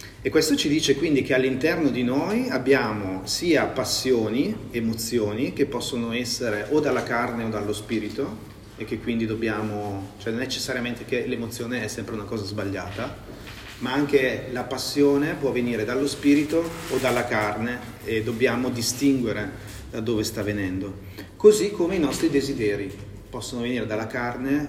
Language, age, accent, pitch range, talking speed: Italian, 30-49, native, 105-130 Hz, 155 wpm